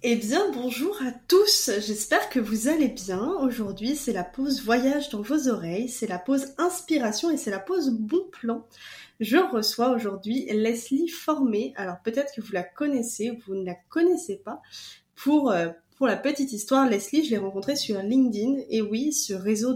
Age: 20-39